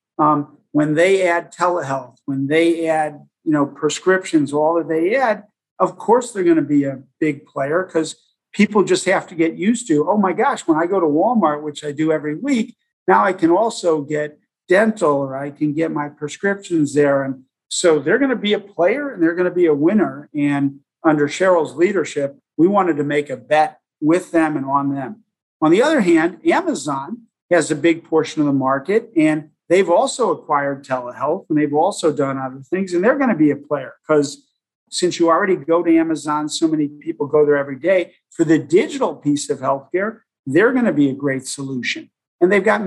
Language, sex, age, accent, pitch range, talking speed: English, male, 50-69, American, 150-190 Hz, 205 wpm